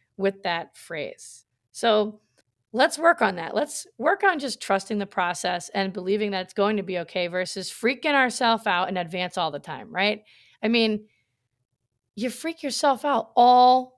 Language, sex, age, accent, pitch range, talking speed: English, female, 30-49, American, 175-240 Hz, 170 wpm